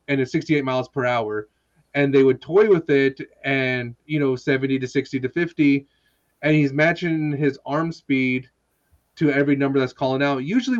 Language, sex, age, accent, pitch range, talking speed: English, male, 30-49, American, 125-150 Hz, 180 wpm